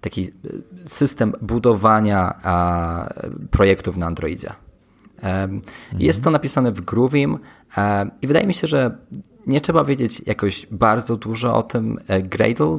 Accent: native